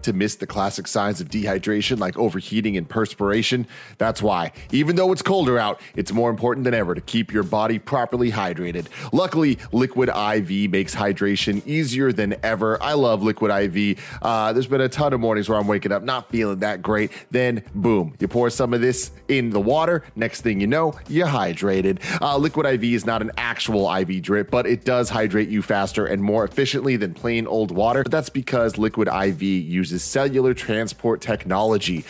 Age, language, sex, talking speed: 30-49, English, male, 195 wpm